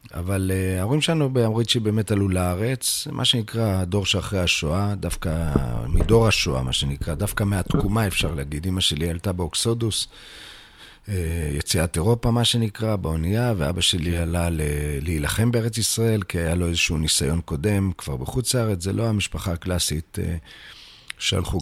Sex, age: male, 50-69